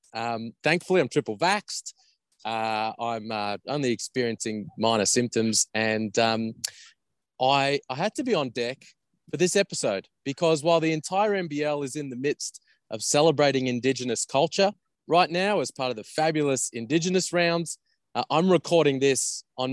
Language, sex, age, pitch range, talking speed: English, male, 20-39, 120-165 Hz, 155 wpm